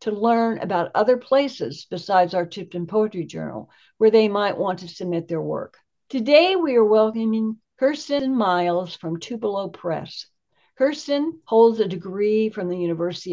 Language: English